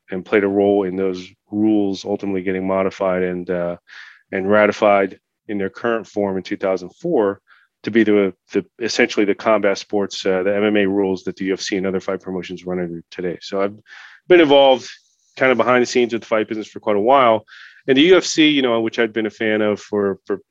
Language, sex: English, male